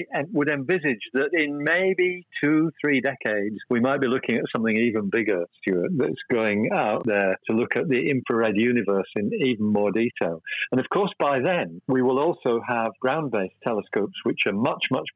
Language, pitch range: English, 105-130 Hz